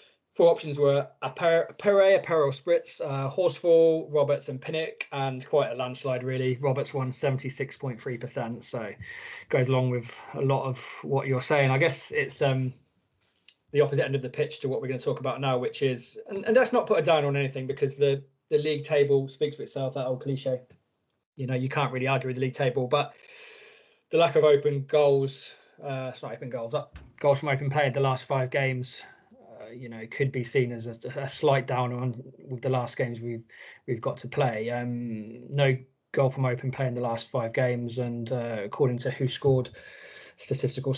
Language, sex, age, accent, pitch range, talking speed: English, male, 20-39, British, 125-150 Hz, 205 wpm